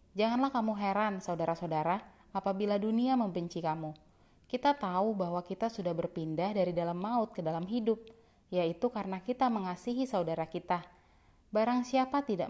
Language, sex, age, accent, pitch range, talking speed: Indonesian, female, 30-49, native, 180-245 Hz, 140 wpm